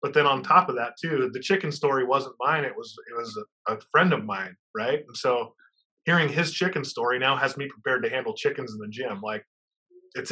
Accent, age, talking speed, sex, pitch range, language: American, 20-39, 235 wpm, male, 120-170 Hz, English